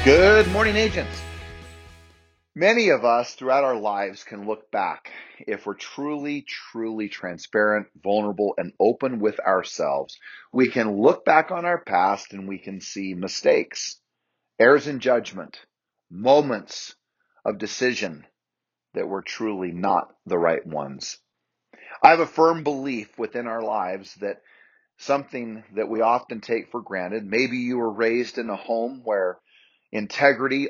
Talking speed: 140 wpm